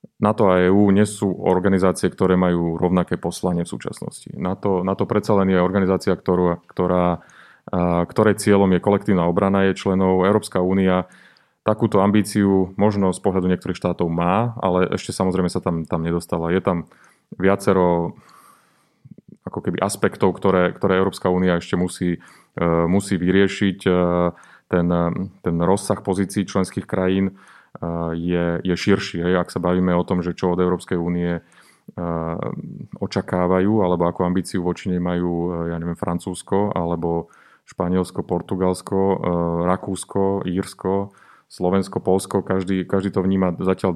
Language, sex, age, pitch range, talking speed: Slovak, male, 30-49, 85-95 Hz, 135 wpm